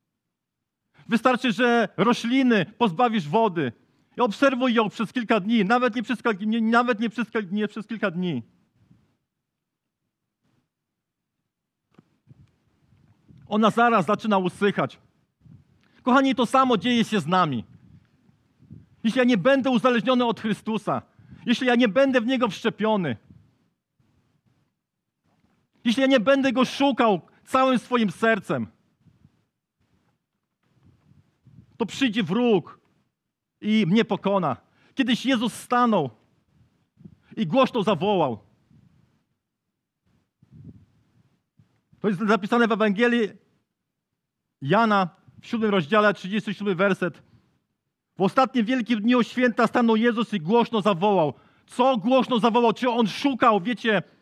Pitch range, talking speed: 205-250 Hz, 105 wpm